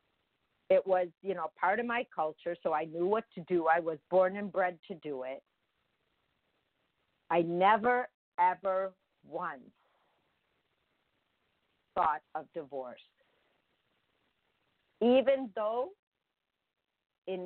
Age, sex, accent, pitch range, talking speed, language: 50-69, female, American, 165-210 Hz, 110 wpm, English